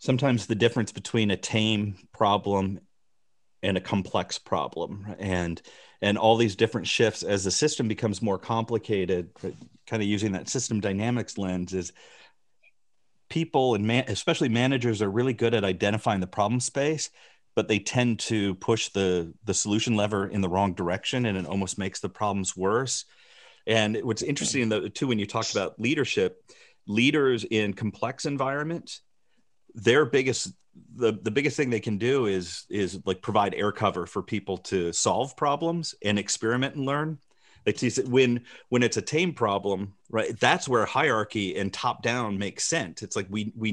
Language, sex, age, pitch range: English, male, 40-59, 100-125 Hz